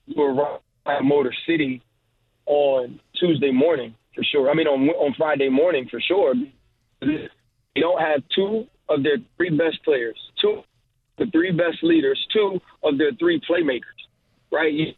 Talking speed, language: 160 wpm, English